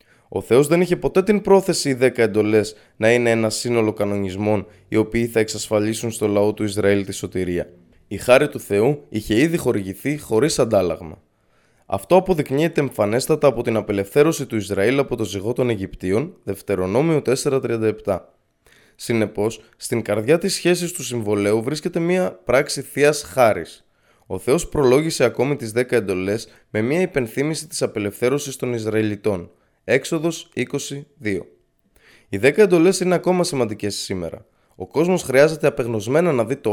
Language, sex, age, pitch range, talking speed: Greek, male, 20-39, 105-140 Hz, 150 wpm